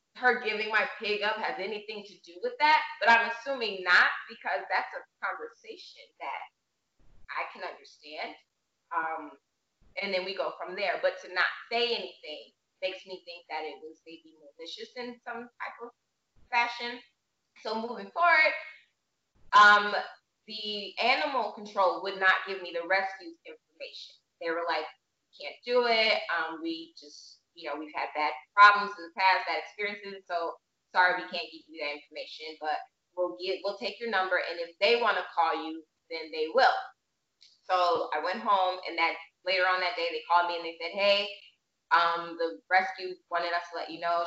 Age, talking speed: 20-39, 180 wpm